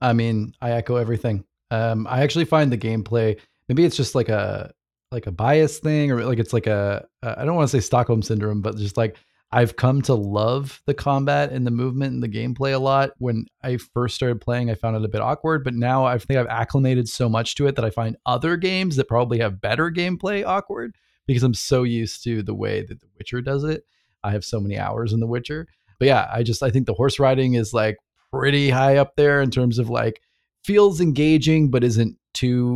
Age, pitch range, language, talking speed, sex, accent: 20-39, 115-135 Hz, English, 230 wpm, male, American